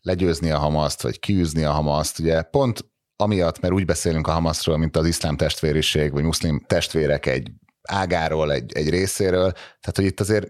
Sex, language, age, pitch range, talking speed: male, Hungarian, 30-49, 75-95 Hz, 175 wpm